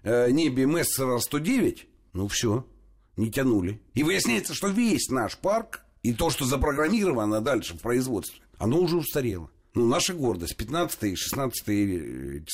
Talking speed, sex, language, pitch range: 145 wpm, male, Russian, 100-150 Hz